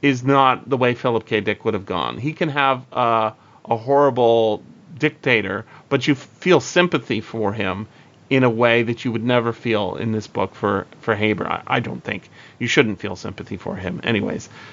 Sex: male